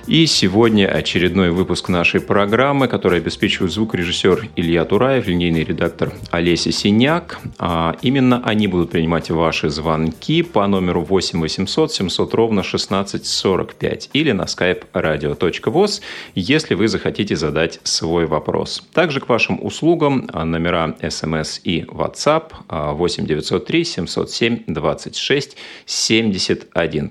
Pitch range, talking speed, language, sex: 80-115 Hz, 115 wpm, Russian, male